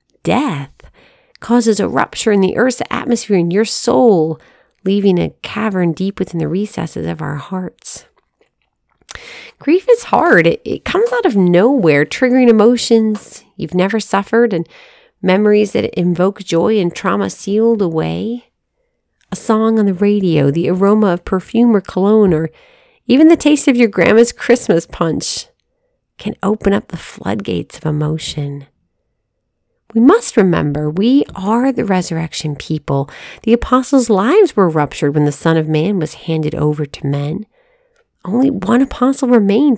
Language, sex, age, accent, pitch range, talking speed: English, female, 40-59, American, 165-245 Hz, 150 wpm